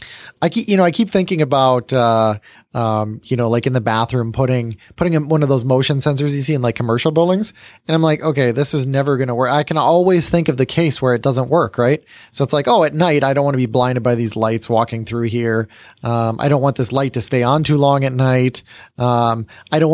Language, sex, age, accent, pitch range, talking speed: English, male, 20-39, American, 125-155 Hz, 260 wpm